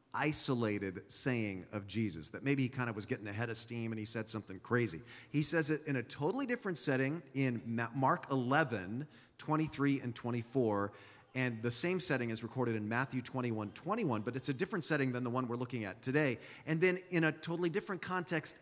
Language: English